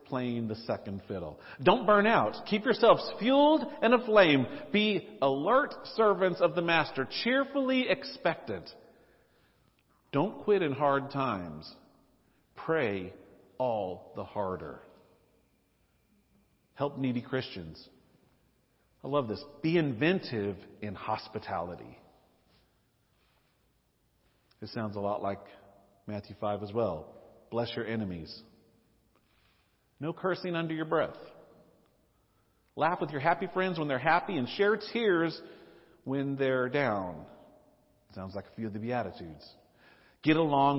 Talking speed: 115 wpm